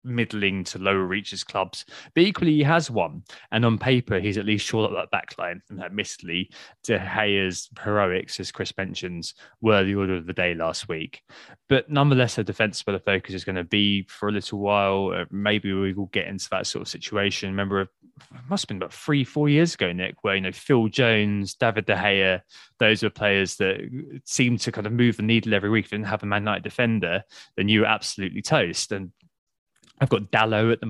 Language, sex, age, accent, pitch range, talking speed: English, male, 20-39, British, 95-115 Hz, 210 wpm